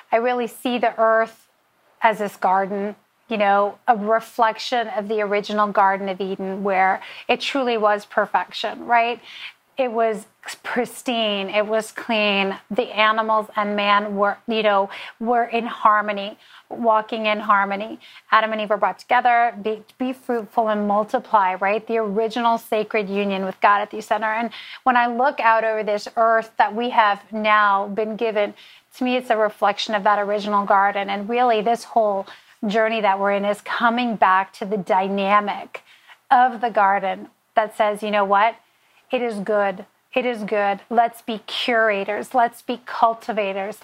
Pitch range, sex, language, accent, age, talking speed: 205-235 Hz, female, English, American, 30-49, 165 wpm